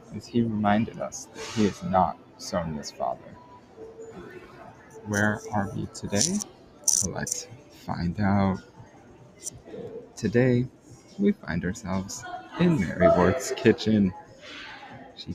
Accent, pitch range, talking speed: American, 90-120 Hz, 100 wpm